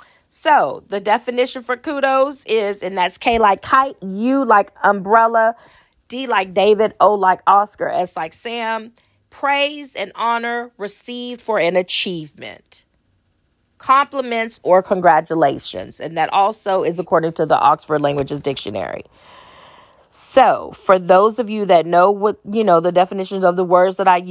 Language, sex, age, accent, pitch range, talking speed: English, female, 40-59, American, 160-220 Hz, 150 wpm